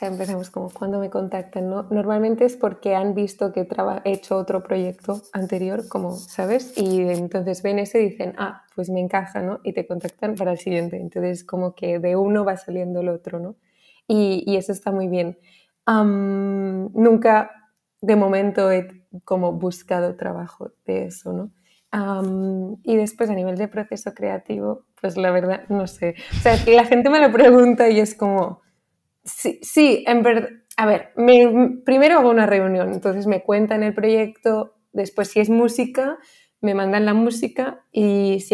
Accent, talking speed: Spanish, 175 wpm